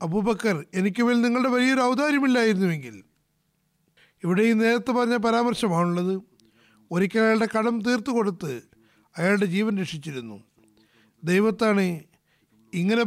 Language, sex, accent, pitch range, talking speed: Malayalam, male, native, 165-240 Hz, 85 wpm